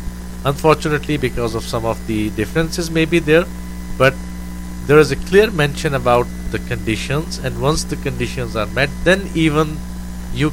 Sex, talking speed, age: male, 160 wpm, 50-69